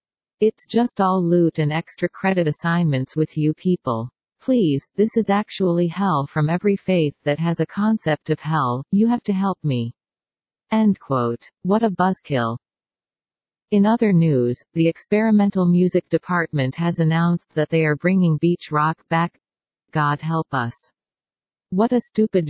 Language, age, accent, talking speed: English, 40-59, American, 150 wpm